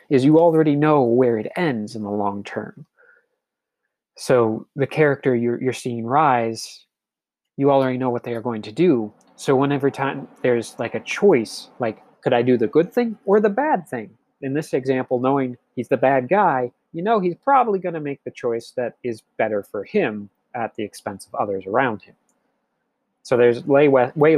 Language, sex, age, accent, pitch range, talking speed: English, male, 30-49, American, 110-140 Hz, 190 wpm